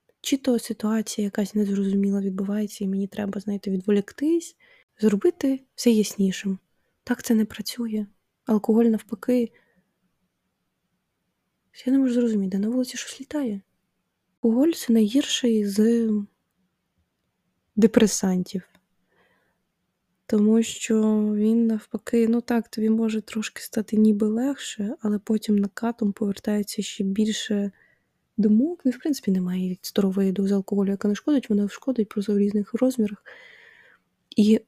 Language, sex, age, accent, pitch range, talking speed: Ukrainian, female, 20-39, native, 200-235 Hz, 120 wpm